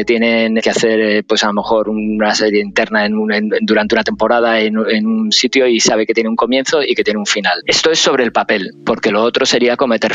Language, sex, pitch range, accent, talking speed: Spanish, male, 110-130 Hz, Spanish, 240 wpm